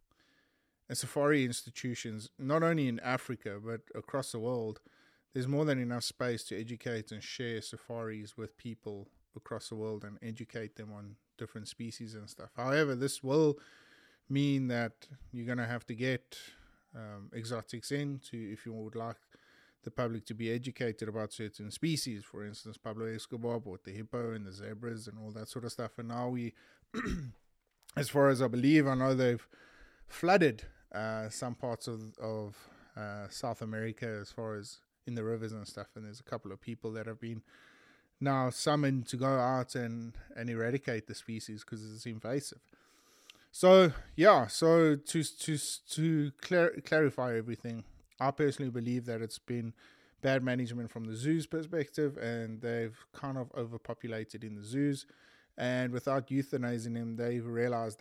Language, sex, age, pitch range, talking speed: English, male, 20-39, 110-130 Hz, 165 wpm